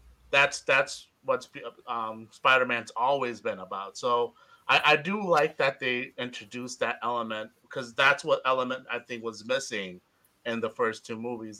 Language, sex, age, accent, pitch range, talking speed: English, male, 30-49, American, 115-170 Hz, 160 wpm